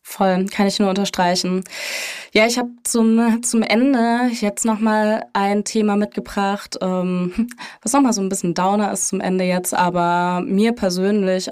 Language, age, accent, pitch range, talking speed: German, 20-39, German, 180-205 Hz, 155 wpm